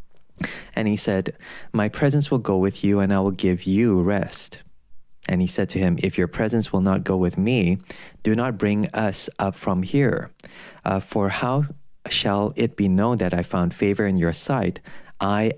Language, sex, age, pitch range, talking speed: English, male, 20-39, 90-100 Hz, 195 wpm